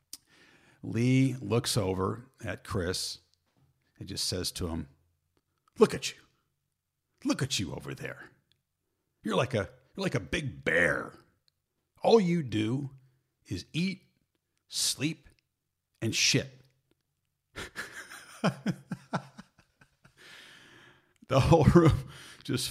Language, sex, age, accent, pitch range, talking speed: English, male, 50-69, American, 90-130 Hz, 100 wpm